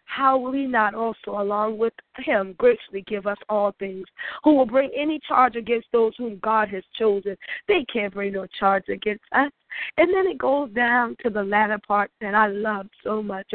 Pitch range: 210-275 Hz